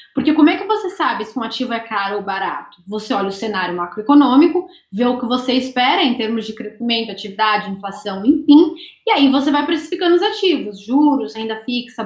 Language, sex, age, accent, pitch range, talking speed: English, female, 10-29, Brazilian, 225-300 Hz, 200 wpm